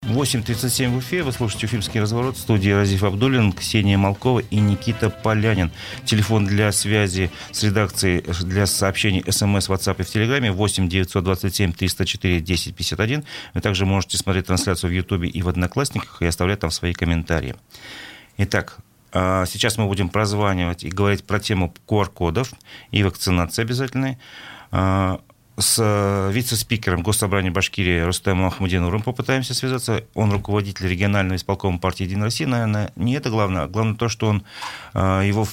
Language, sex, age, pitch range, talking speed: Russian, male, 40-59, 95-110 Hz, 135 wpm